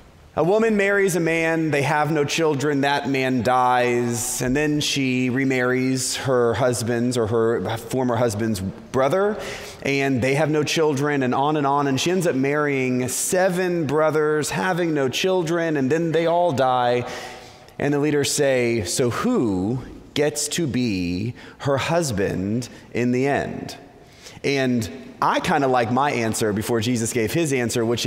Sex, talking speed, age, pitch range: male, 160 wpm, 30-49, 125-170 Hz